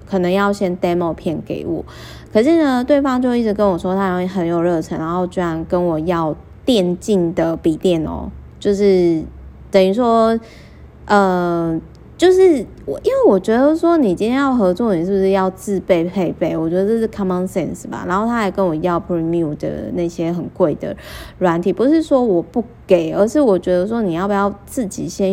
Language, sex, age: Chinese, female, 20-39